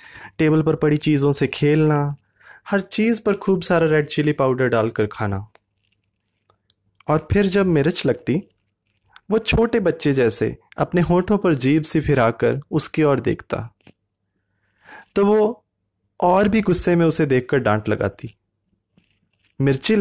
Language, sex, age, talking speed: Hindi, male, 20-39, 135 wpm